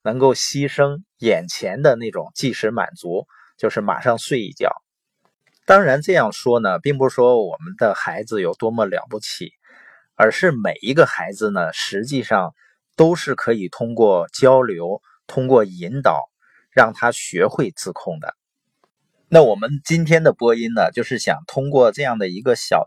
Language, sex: Chinese, male